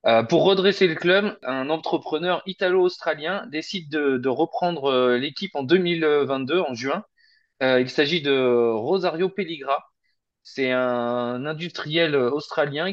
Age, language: 20-39, French